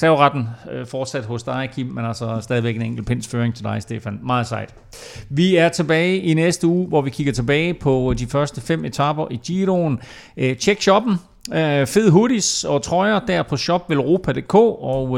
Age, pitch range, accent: 40-59, 115-155 Hz, native